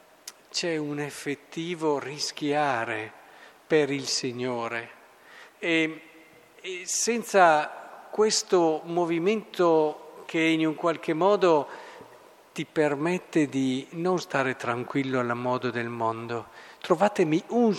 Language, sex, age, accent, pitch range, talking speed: Italian, male, 50-69, native, 135-170 Hz, 100 wpm